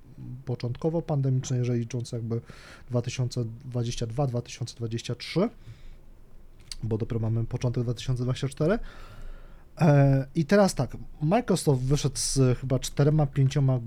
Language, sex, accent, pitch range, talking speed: Polish, male, native, 120-140 Hz, 80 wpm